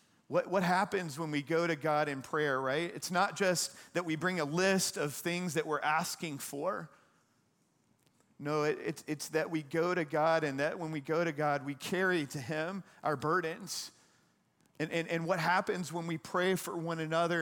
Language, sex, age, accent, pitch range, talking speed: English, male, 40-59, American, 160-190 Hz, 200 wpm